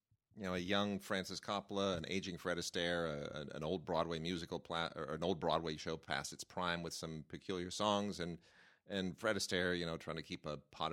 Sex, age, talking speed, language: male, 40-59, 225 wpm, English